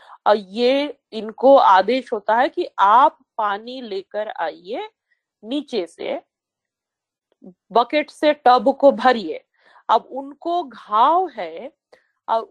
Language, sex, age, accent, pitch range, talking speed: Hindi, female, 40-59, native, 205-300 Hz, 110 wpm